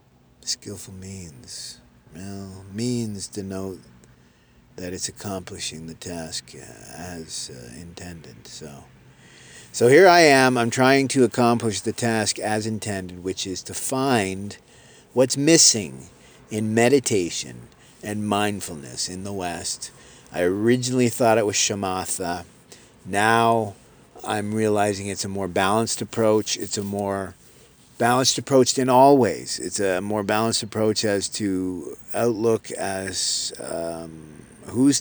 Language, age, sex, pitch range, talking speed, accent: English, 50-69, male, 95-120 Hz, 125 wpm, American